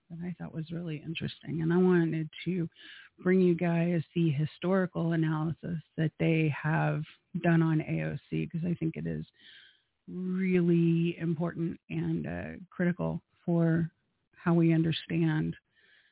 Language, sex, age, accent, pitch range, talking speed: English, female, 30-49, American, 165-200 Hz, 135 wpm